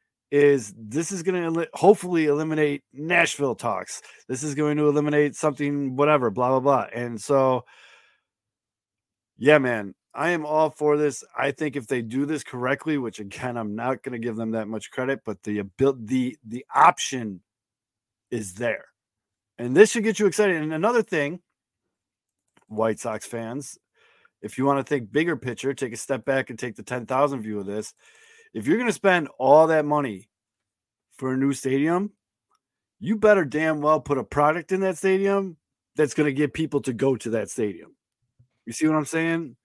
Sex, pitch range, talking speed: male, 120-160 Hz, 180 wpm